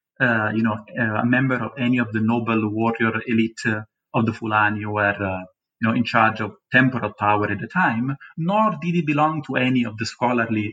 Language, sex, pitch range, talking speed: English, male, 110-150 Hz, 220 wpm